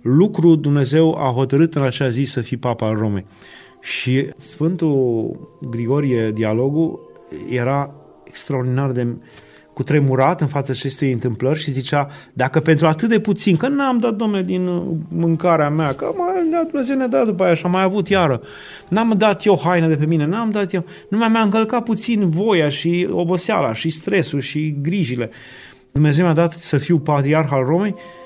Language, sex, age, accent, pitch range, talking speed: Romanian, male, 30-49, native, 135-180 Hz, 170 wpm